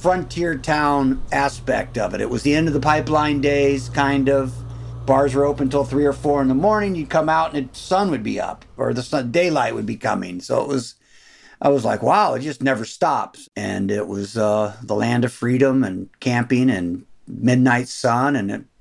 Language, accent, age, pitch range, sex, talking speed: English, American, 50-69, 130-175 Hz, male, 215 wpm